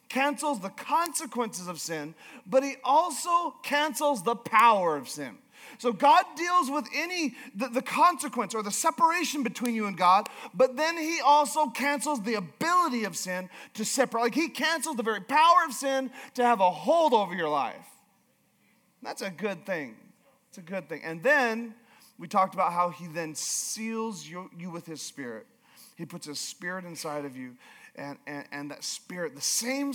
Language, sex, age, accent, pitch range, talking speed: English, male, 40-59, American, 175-270 Hz, 180 wpm